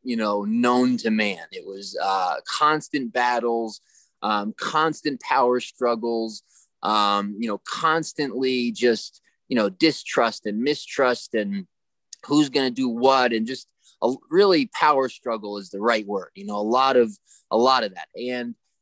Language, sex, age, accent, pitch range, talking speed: English, male, 20-39, American, 120-160 Hz, 160 wpm